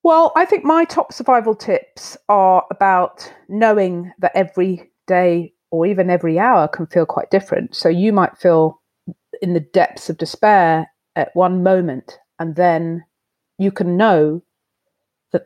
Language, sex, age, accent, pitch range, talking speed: English, female, 40-59, British, 165-190 Hz, 150 wpm